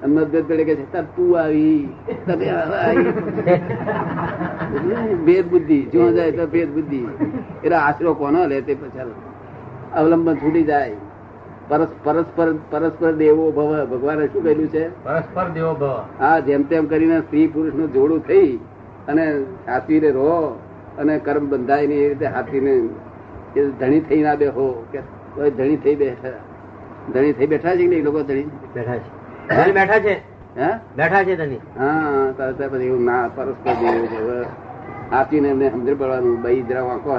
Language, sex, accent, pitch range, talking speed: Gujarati, male, native, 130-160 Hz, 80 wpm